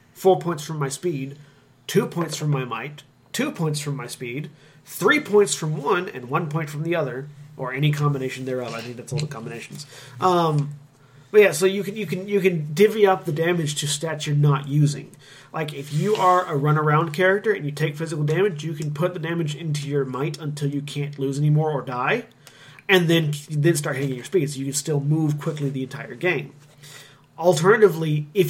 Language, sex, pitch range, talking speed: English, male, 140-170 Hz, 210 wpm